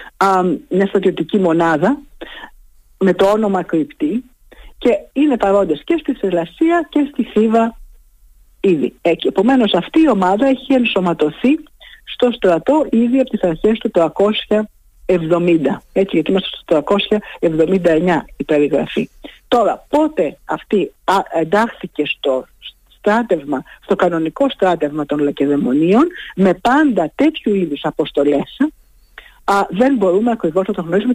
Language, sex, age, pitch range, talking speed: Greek, female, 50-69, 175-265 Hz, 120 wpm